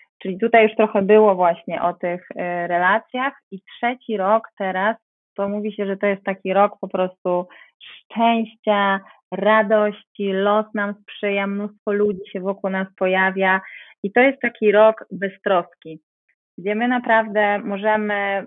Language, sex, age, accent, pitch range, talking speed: Polish, female, 30-49, native, 185-210 Hz, 145 wpm